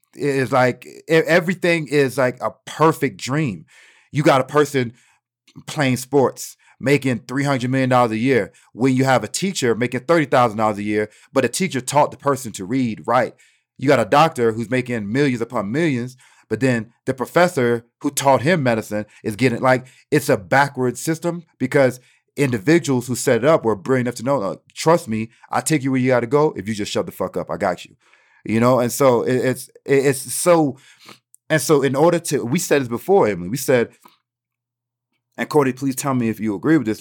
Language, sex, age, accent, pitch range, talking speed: English, male, 40-59, American, 120-145 Hz, 205 wpm